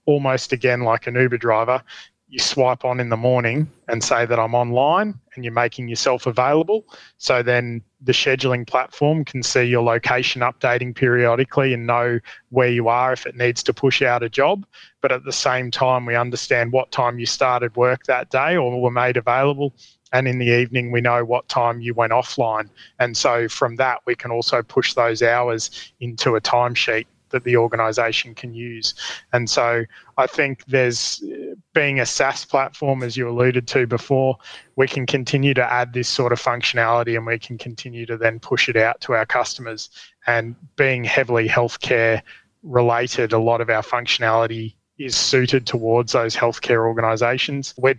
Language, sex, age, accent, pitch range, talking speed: English, male, 20-39, Australian, 115-130 Hz, 180 wpm